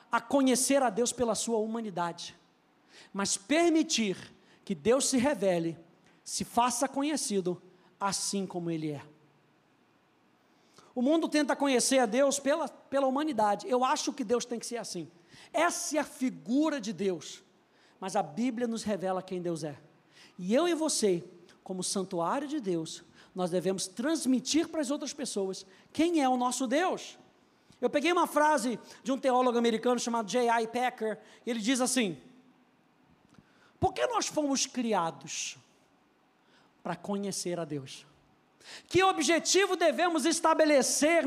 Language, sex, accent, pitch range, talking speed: Portuguese, male, Brazilian, 190-280 Hz, 145 wpm